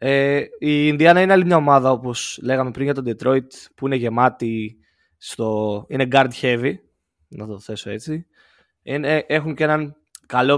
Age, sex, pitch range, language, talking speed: 20-39, male, 115-145 Hz, Greek, 165 wpm